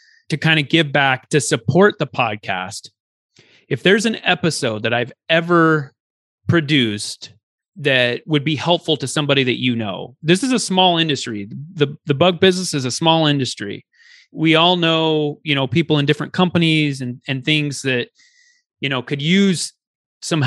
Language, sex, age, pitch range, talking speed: English, male, 30-49, 140-175 Hz, 165 wpm